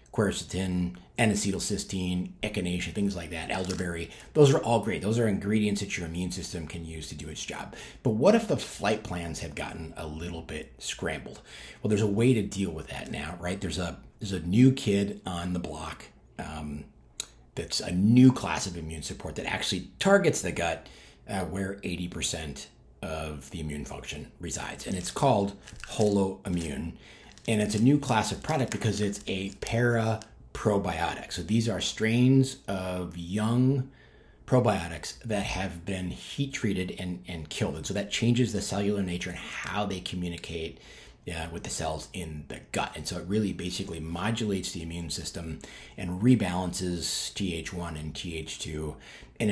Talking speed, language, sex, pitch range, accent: 170 wpm, English, male, 85-105 Hz, American